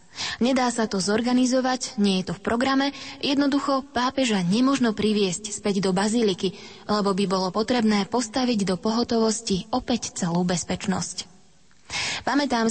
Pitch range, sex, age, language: 190-245 Hz, female, 20-39, Slovak